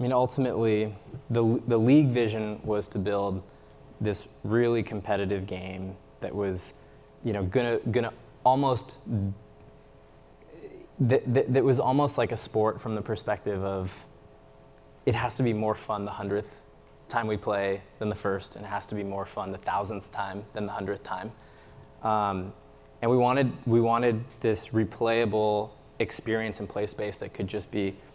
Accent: American